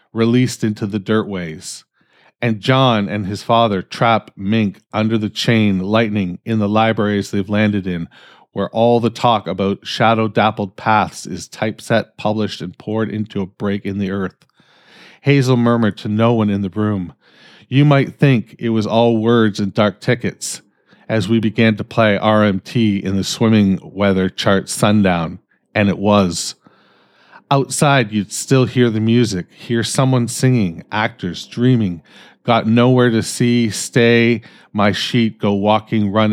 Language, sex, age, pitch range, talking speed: English, male, 40-59, 100-115 Hz, 155 wpm